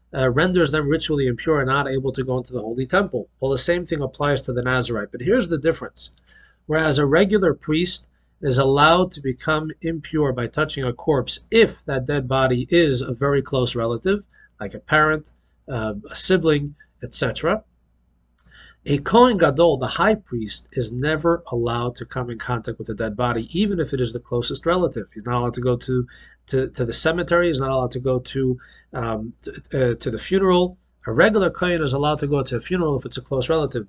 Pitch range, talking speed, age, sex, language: 125-165 Hz, 205 wpm, 40-59, male, English